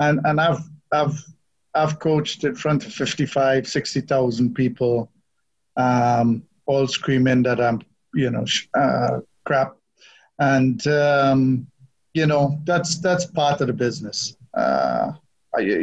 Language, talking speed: English, 130 wpm